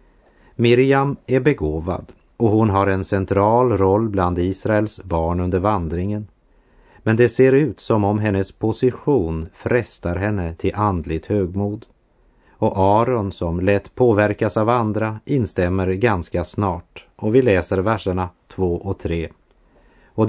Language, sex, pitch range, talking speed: Dutch, male, 90-120 Hz, 135 wpm